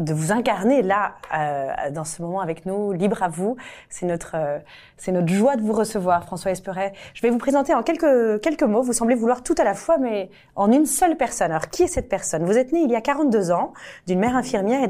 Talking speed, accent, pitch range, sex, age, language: 245 wpm, French, 175-245 Hz, female, 30-49, French